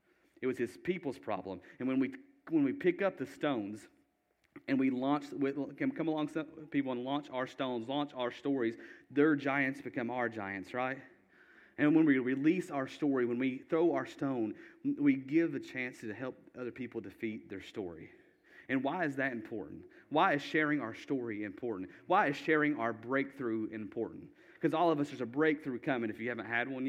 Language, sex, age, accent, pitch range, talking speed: English, male, 40-59, American, 120-160 Hz, 195 wpm